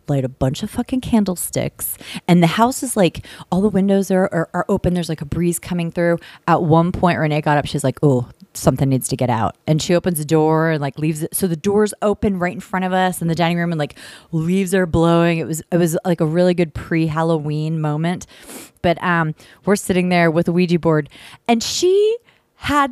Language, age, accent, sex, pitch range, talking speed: English, 30-49, American, female, 155-200 Hz, 230 wpm